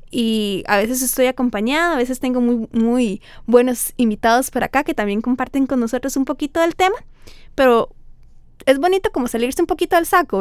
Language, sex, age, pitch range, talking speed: Spanish, female, 20-39, 225-315 Hz, 185 wpm